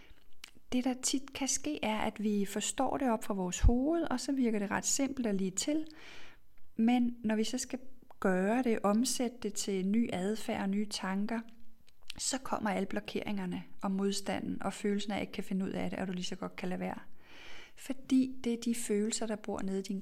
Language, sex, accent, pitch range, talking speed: Danish, female, native, 200-245 Hz, 215 wpm